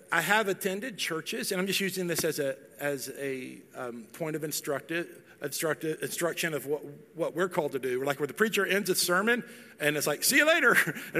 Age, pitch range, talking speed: 50-69, 145-190 Hz, 220 wpm